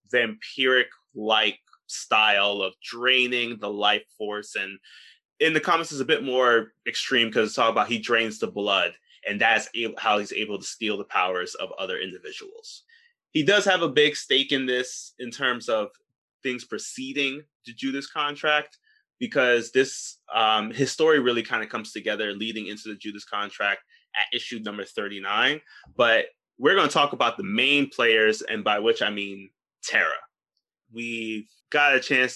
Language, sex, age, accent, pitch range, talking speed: English, male, 20-39, American, 115-165 Hz, 170 wpm